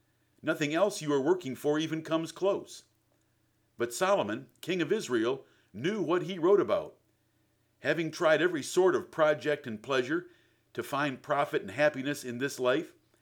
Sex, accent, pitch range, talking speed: male, American, 115-160 Hz, 160 wpm